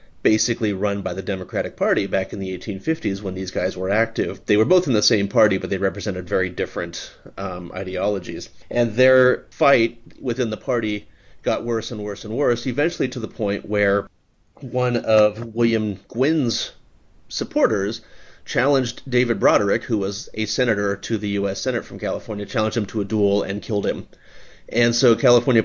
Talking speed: 175 wpm